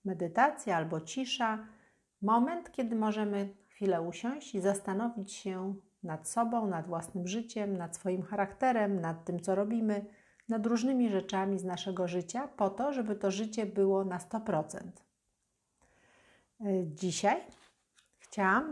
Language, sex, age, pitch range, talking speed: Polish, female, 50-69, 185-225 Hz, 125 wpm